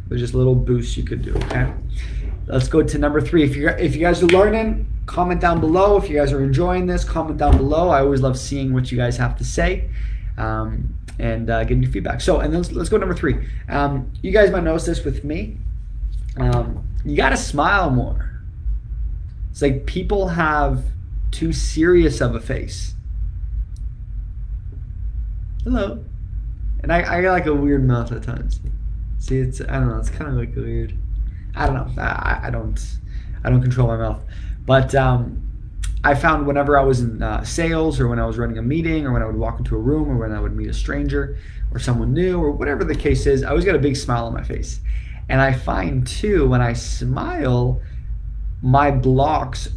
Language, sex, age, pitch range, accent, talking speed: English, male, 20-39, 105-145 Hz, American, 200 wpm